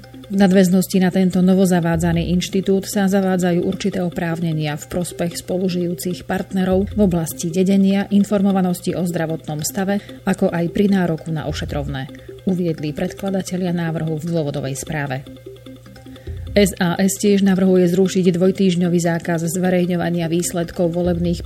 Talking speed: 115 wpm